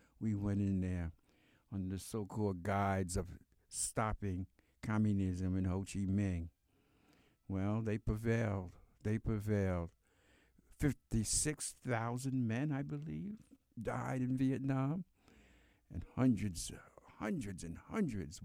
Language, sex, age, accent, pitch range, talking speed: English, male, 60-79, American, 85-110 Hz, 105 wpm